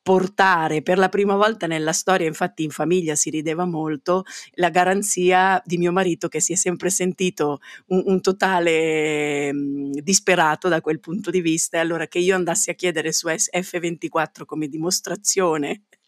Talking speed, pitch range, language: 165 wpm, 160-190 Hz, Italian